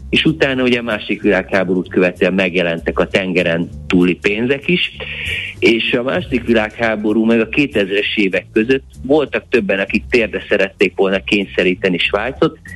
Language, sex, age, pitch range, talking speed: Hungarian, male, 30-49, 90-110 Hz, 140 wpm